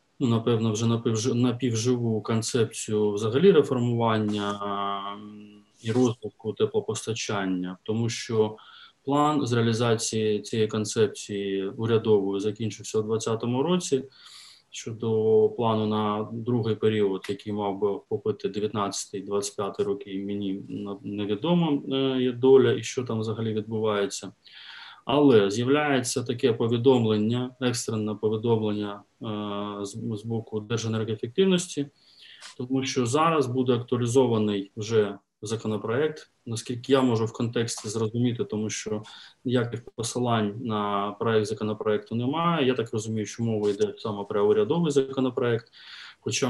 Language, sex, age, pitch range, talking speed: Ukrainian, male, 20-39, 105-130 Hz, 110 wpm